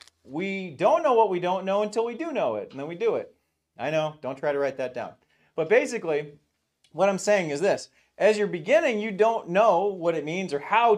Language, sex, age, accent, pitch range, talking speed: English, male, 40-59, American, 150-210 Hz, 235 wpm